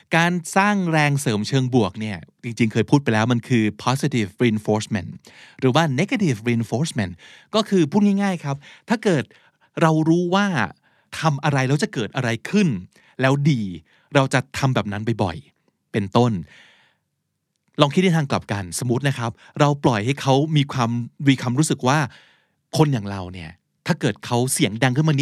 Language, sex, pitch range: Thai, male, 115-155 Hz